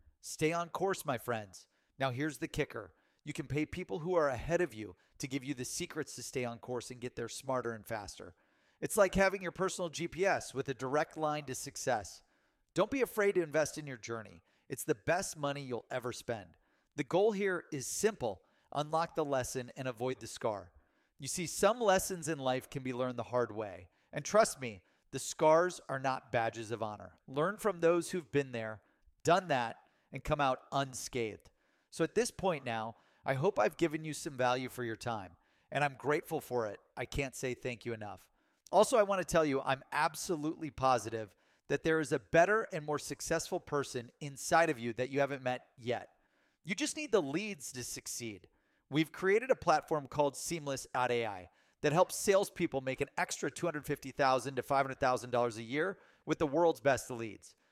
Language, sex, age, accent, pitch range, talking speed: English, male, 40-59, American, 125-165 Hz, 195 wpm